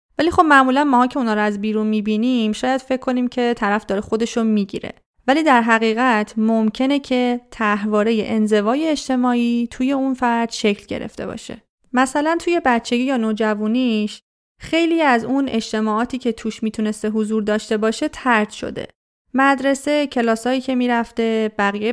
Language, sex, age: Persian, female, 30-49